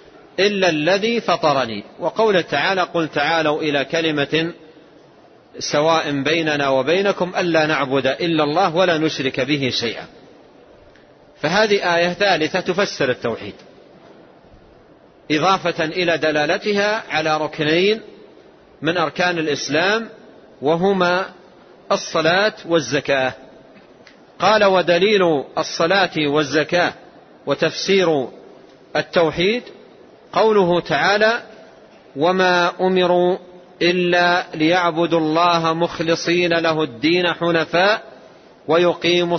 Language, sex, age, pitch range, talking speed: Arabic, male, 40-59, 155-190 Hz, 80 wpm